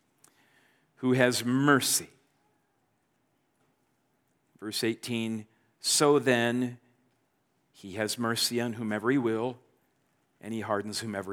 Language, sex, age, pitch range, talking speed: English, male, 50-69, 125-185 Hz, 95 wpm